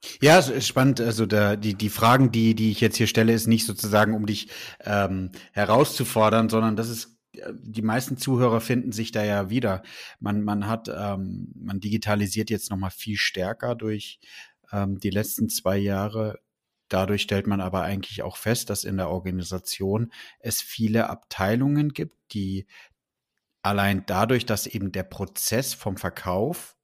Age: 30-49